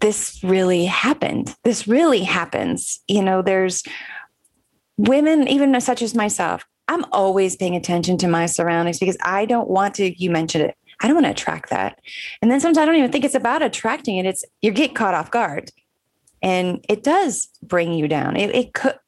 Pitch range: 170-215 Hz